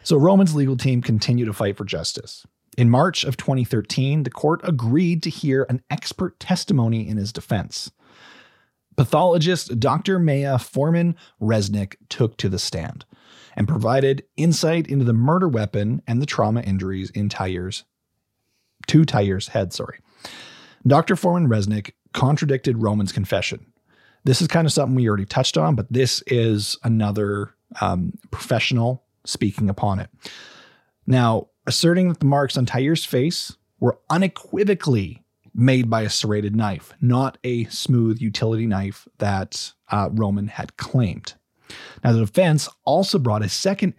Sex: male